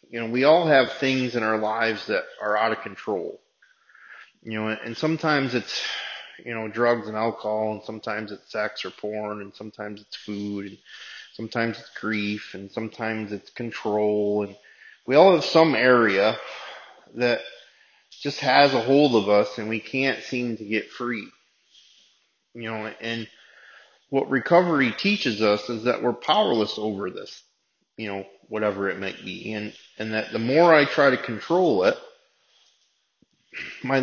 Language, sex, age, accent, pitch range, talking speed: English, male, 30-49, American, 110-130 Hz, 160 wpm